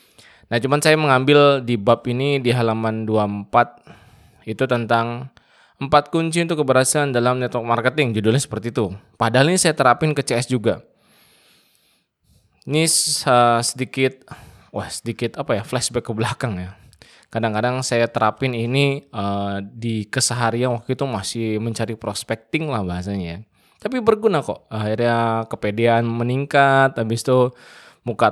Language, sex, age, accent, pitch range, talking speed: Indonesian, male, 20-39, native, 115-135 Hz, 140 wpm